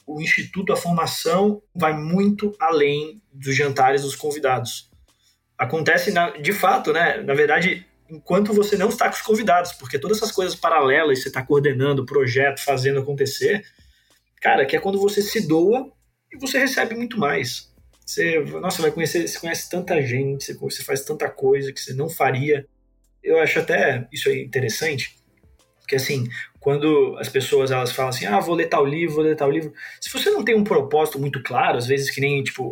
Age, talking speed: 20-39, 185 wpm